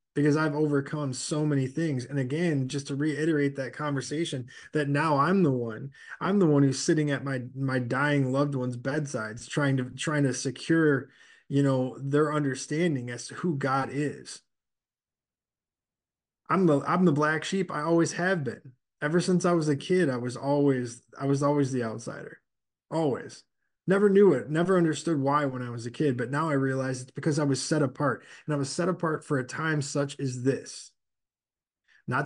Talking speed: 190 wpm